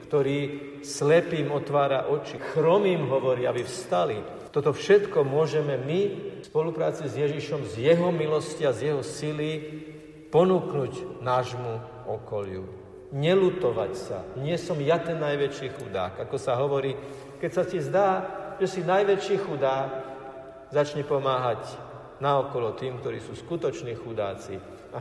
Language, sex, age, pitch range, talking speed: Slovak, male, 50-69, 120-155 Hz, 130 wpm